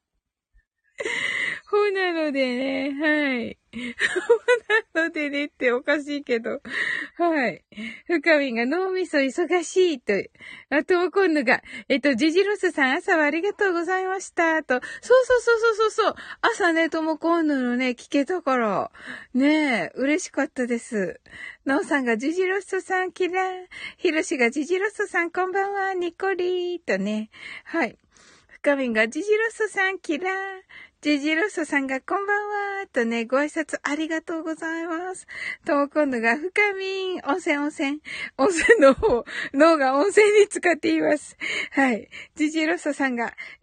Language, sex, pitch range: Japanese, female, 270-375 Hz